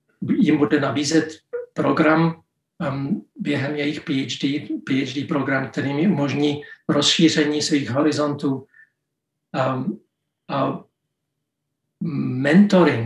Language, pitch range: Czech, 145-180 Hz